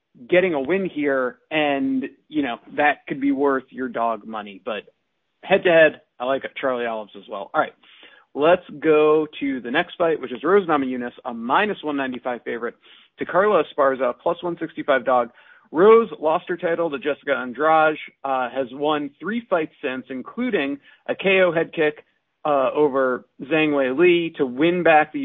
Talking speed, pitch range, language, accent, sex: 175 wpm, 135-170 Hz, English, American, male